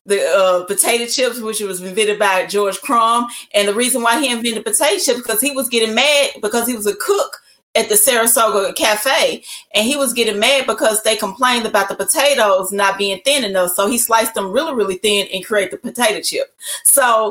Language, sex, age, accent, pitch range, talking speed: English, female, 30-49, American, 200-250 Hz, 210 wpm